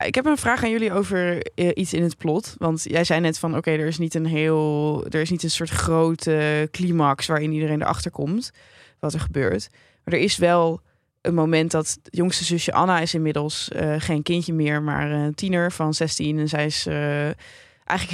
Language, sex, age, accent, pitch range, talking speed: Dutch, female, 20-39, Dutch, 155-175 Hz, 210 wpm